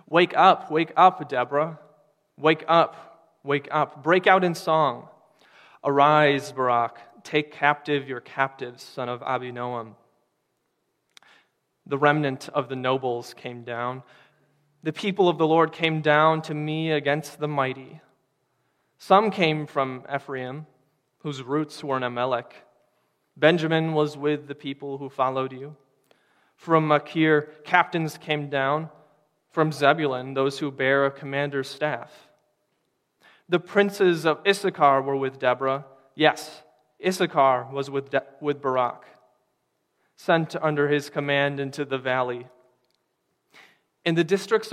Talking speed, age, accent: 125 wpm, 20-39, American